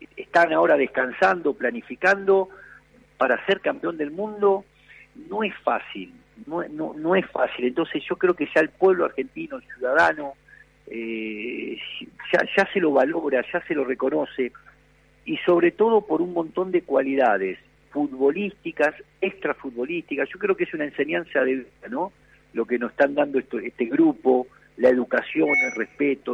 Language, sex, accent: Spanish, male, Argentinian